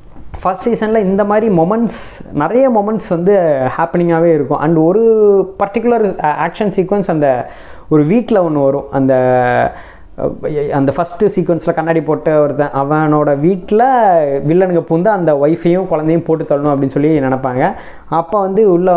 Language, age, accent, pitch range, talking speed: Tamil, 20-39, native, 145-190 Hz, 130 wpm